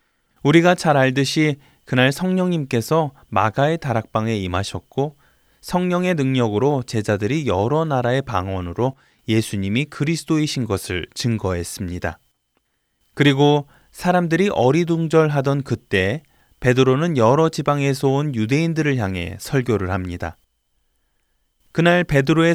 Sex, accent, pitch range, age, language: male, native, 110-160 Hz, 20-39, Korean